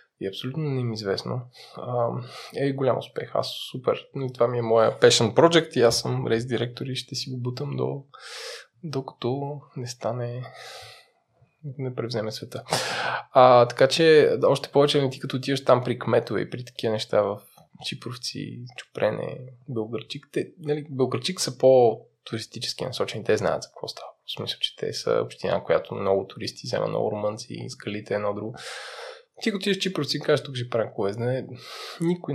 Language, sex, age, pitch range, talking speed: Bulgarian, male, 20-39, 120-150 Hz, 175 wpm